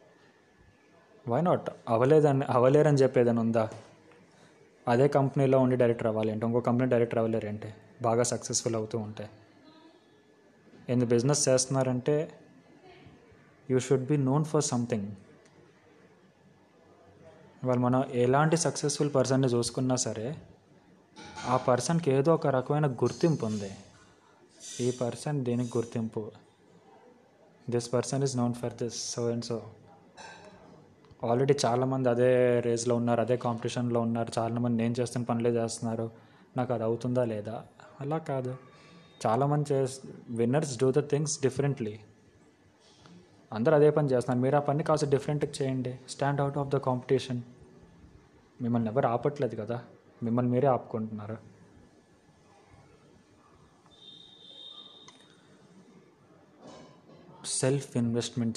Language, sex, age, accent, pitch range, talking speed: Telugu, male, 20-39, native, 115-140 Hz, 110 wpm